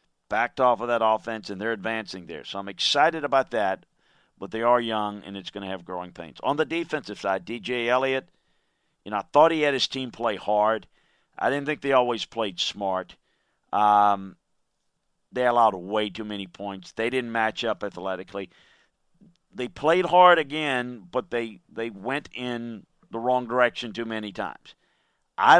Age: 50-69